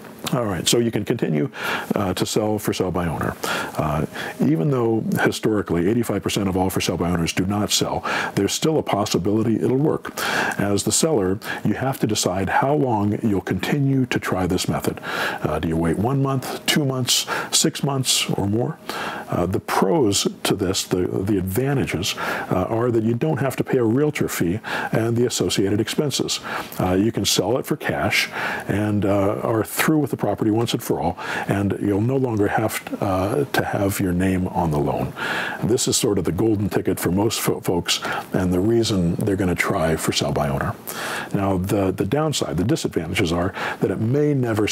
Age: 50-69